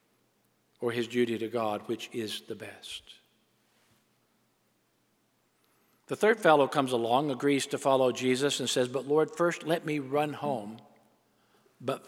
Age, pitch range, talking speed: 50-69, 135-170 Hz, 140 wpm